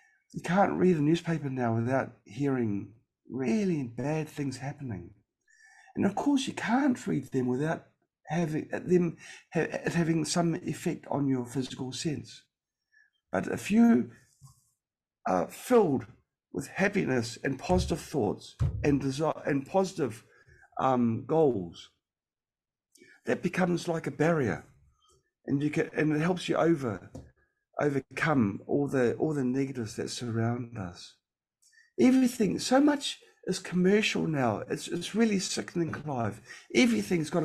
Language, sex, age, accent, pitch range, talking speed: English, male, 50-69, British, 130-205 Hz, 130 wpm